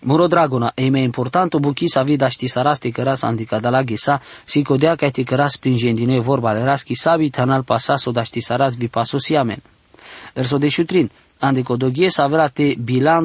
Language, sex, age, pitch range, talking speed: English, male, 20-39, 125-155 Hz, 175 wpm